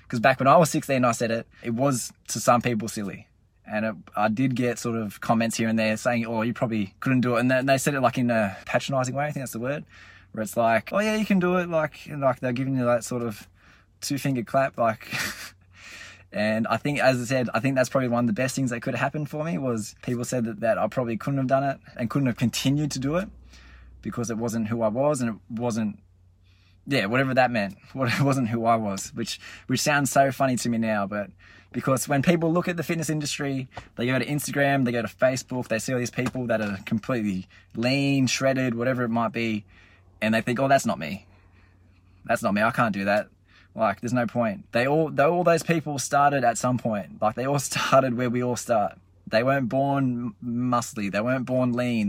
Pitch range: 110-135 Hz